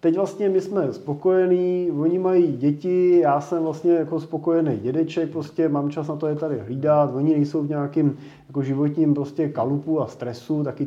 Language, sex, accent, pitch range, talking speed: Czech, male, native, 140-165 Hz, 180 wpm